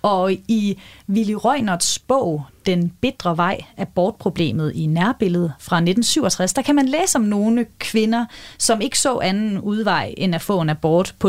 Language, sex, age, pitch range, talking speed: Danish, female, 30-49, 180-235 Hz, 170 wpm